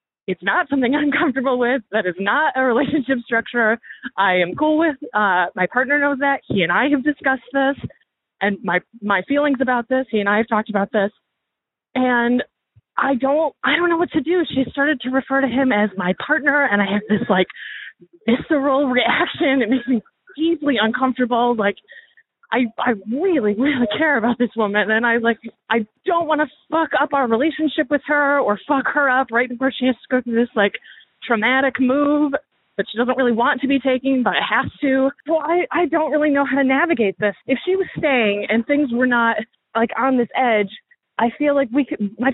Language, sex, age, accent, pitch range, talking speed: English, female, 30-49, American, 225-290 Hz, 210 wpm